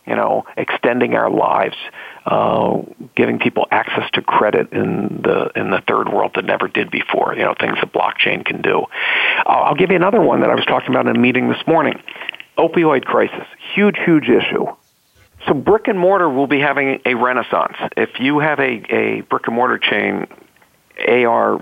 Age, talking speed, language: 50-69, 190 wpm, English